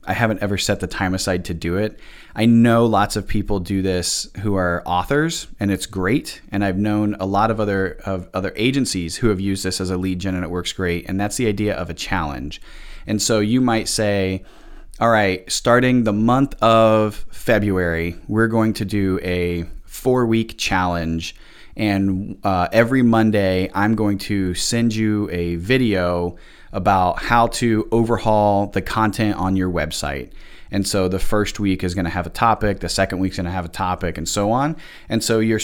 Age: 30-49